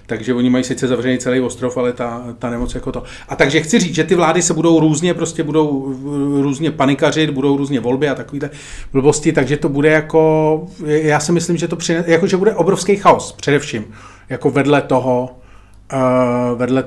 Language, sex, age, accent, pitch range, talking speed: Czech, male, 40-59, native, 120-150 Hz, 190 wpm